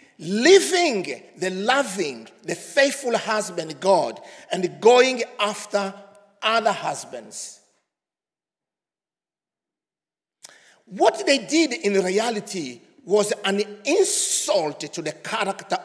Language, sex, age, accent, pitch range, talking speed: English, male, 50-69, Nigerian, 200-290 Hz, 85 wpm